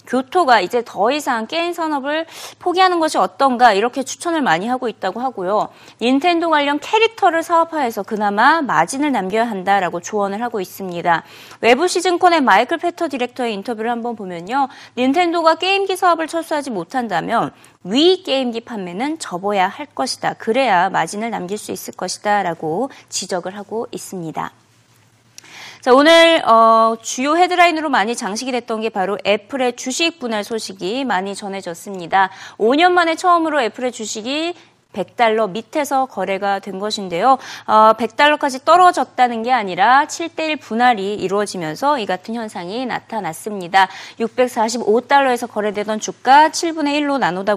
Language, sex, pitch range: Korean, female, 200-295 Hz